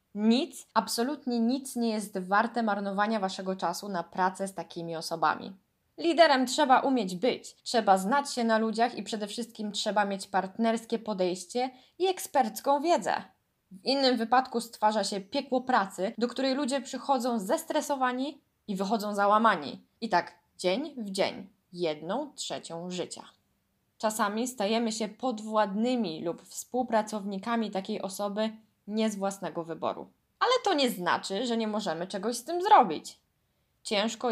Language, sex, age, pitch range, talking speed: Polish, female, 20-39, 190-255 Hz, 140 wpm